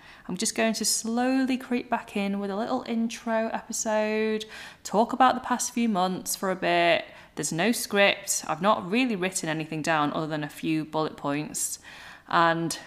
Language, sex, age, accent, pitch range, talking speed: English, female, 20-39, British, 165-230 Hz, 175 wpm